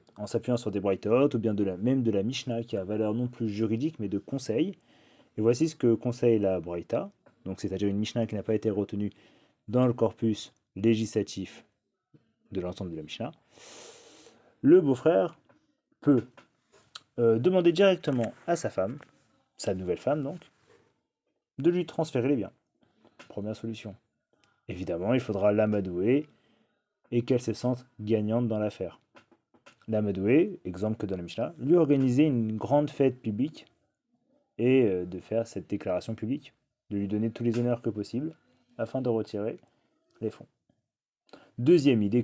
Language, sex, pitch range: French, male, 105-135 Hz